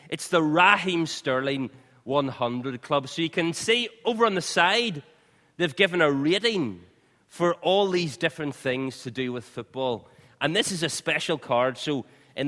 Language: English